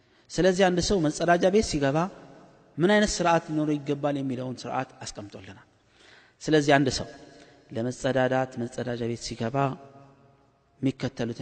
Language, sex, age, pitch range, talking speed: Amharic, male, 30-49, 115-140 Hz, 105 wpm